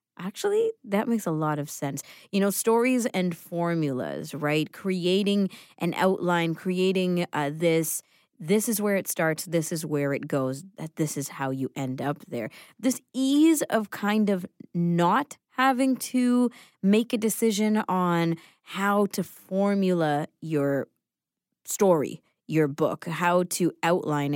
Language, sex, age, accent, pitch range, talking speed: English, female, 20-39, American, 150-200 Hz, 145 wpm